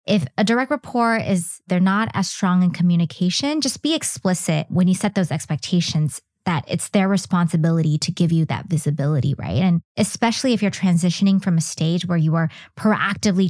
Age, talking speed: 20-39, 180 wpm